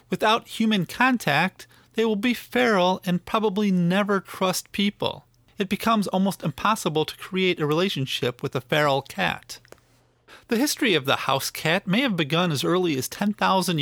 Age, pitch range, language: 40-59, 140-200 Hz, English